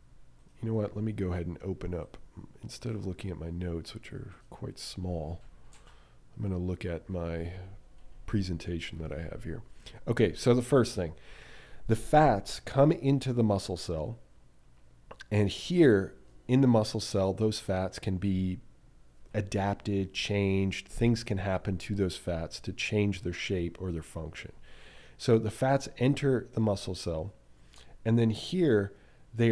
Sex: male